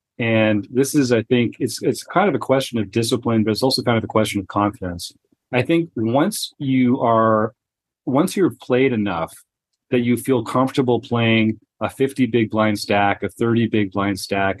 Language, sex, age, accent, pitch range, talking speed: English, male, 40-59, American, 105-135 Hz, 190 wpm